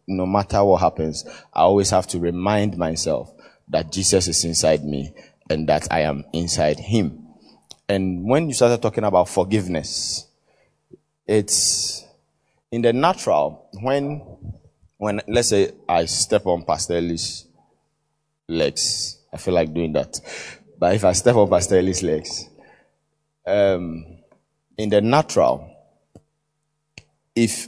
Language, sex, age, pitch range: English, male, 30-49, 90-120 Hz